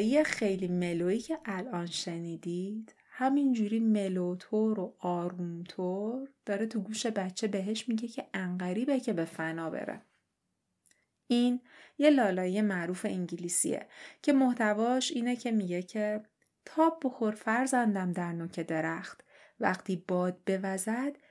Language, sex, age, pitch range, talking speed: Persian, female, 30-49, 185-260 Hz, 120 wpm